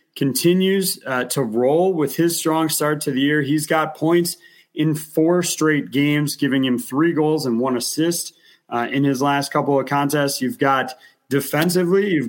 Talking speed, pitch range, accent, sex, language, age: 175 wpm, 135-160 Hz, American, male, English, 30-49